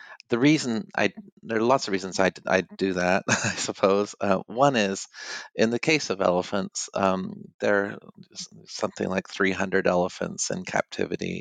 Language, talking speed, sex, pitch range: English, 165 wpm, male, 95-110 Hz